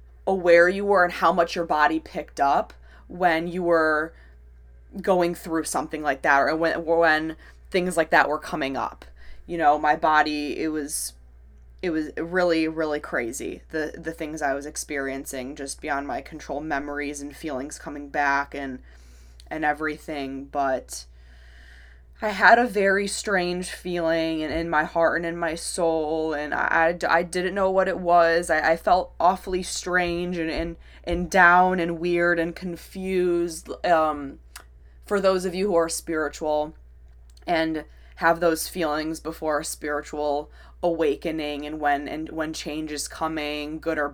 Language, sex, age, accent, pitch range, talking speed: English, female, 20-39, American, 140-170 Hz, 160 wpm